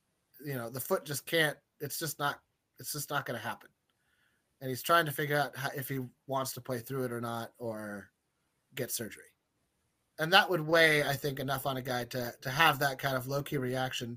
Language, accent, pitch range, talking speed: English, American, 130-150 Hz, 225 wpm